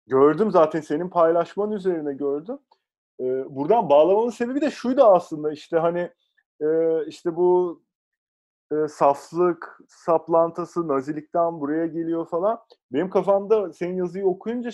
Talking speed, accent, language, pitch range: 120 wpm, Turkish, English, 140-195 Hz